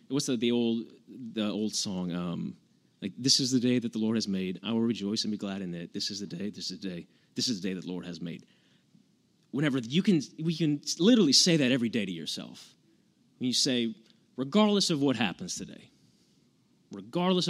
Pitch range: 105-140 Hz